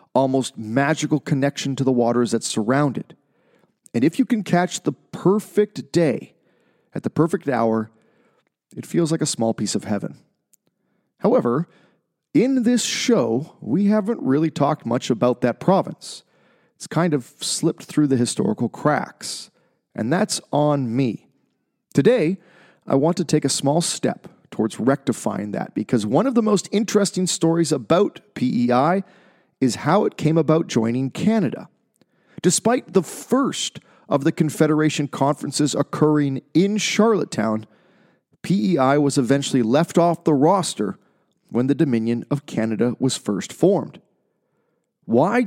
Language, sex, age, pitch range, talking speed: English, male, 40-59, 130-175 Hz, 140 wpm